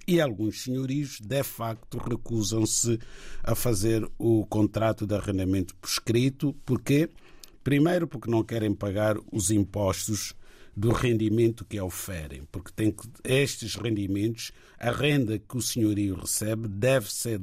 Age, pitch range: 50-69, 105-125 Hz